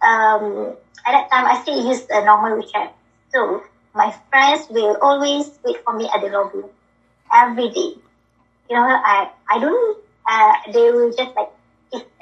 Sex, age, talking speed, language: male, 20-39, 165 wpm, English